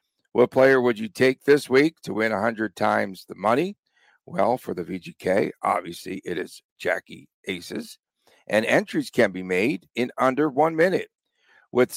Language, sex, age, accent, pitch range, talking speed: English, male, 50-69, American, 110-150 Hz, 160 wpm